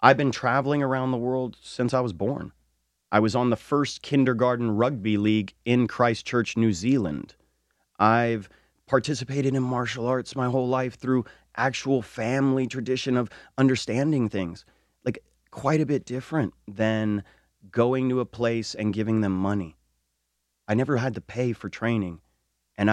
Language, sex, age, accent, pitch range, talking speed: English, male, 30-49, American, 100-130 Hz, 155 wpm